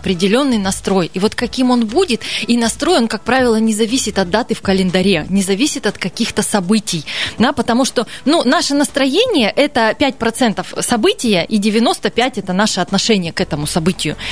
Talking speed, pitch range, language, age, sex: 175 wpm, 200-260 Hz, Russian, 20-39, female